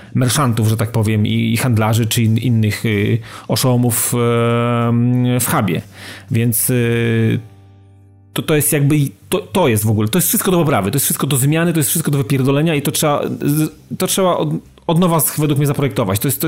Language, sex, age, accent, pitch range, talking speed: Polish, male, 30-49, native, 115-150 Hz, 200 wpm